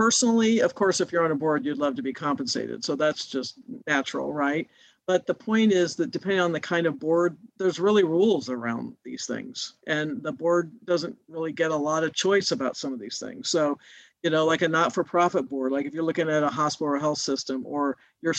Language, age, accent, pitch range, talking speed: English, 50-69, American, 145-175 Hz, 225 wpm